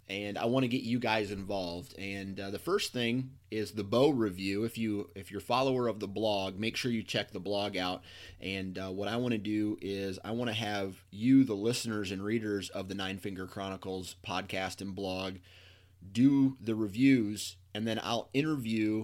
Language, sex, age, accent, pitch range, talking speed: English, male, 30-49, American, 100-120 Hz, 210 wpm